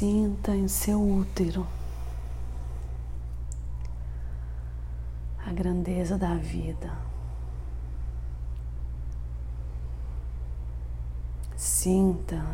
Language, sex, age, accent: Portuguese, female, 40-59, Brazilian